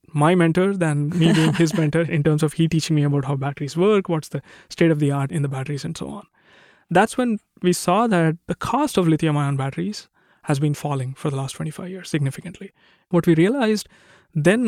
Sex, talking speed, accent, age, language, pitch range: male, 215 wpm, Indian, 20-39, English, 145-180 Hz